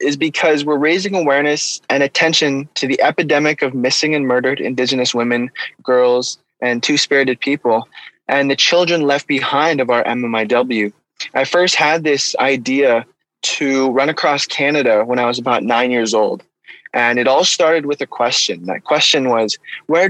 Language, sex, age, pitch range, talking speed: English, male, 20-39, 125-150 Hz, 165 wpm